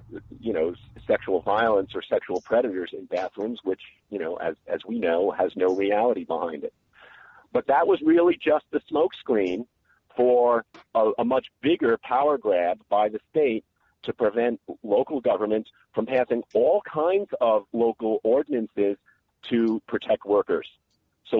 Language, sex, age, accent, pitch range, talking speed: English, male, 50-69, American, 105-120 Hz, 150 wpm